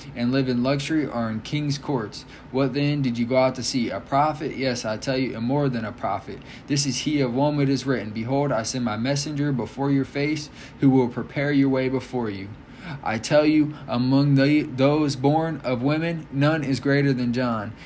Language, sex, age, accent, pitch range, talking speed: English, male, 20-39, American, 120-140 Hz, 210 wpm